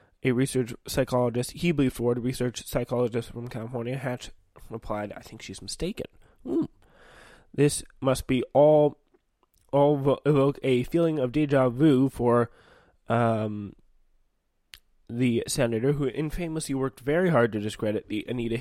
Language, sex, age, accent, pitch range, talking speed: English, male, 20-39, American, 120-145 Hz, 130 wpm